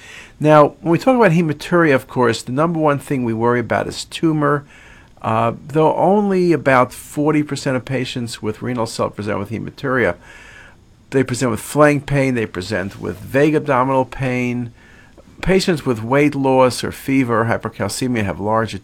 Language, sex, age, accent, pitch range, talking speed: English, male, 50-69, American, 115-145 Hz, 160 wpm